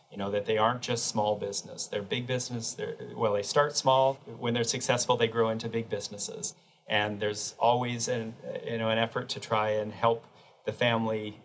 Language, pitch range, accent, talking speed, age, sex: English, 105-125 Hz, American, 200 wpm, 40-59, male